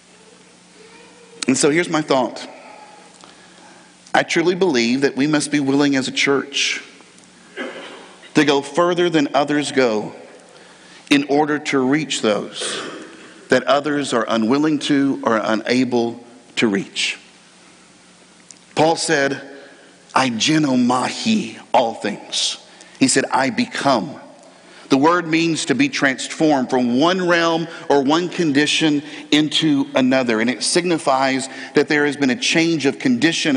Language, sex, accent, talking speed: English, male, American, 125 wpm